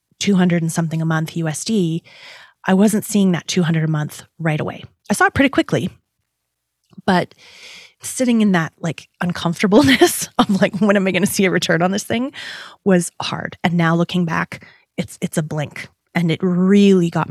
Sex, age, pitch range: female, 30-49, 160-200 Hz